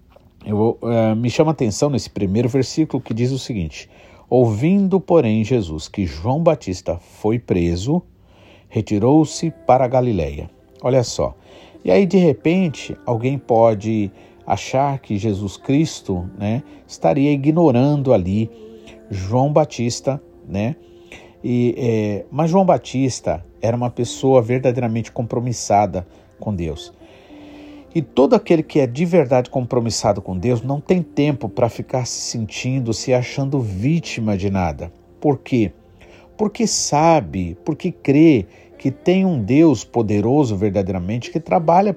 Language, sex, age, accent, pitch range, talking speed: Portuguese, male, 50-69, Brazilian, 100-150 Hz, 130 wpm